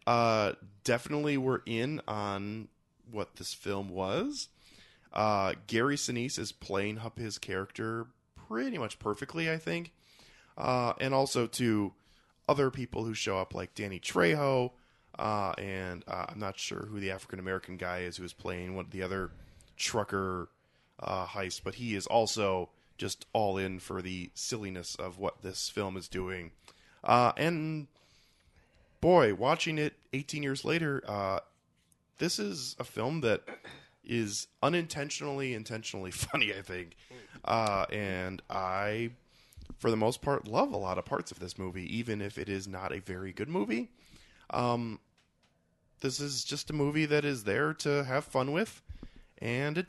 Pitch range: 95-135 Hz